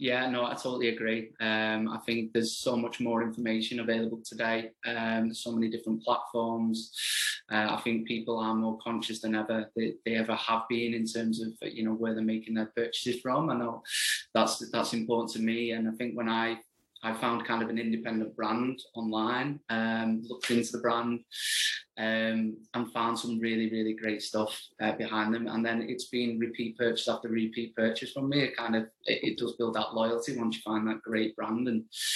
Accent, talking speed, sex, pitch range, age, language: British, 205 wpm, male, 110-120 Hz, 20-39, English